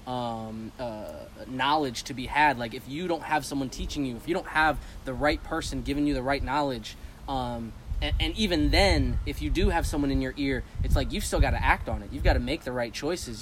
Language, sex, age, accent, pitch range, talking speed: English, male, 20-39, American, 115-145 Hz, 245 wpm